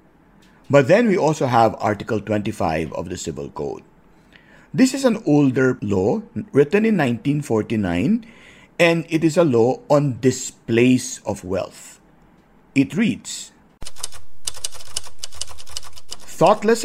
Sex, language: male, English